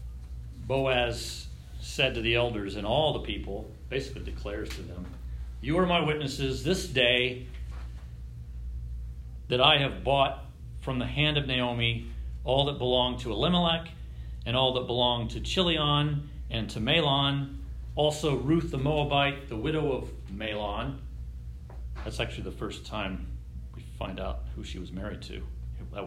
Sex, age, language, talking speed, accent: male, 40-59, English, 145 wpm, American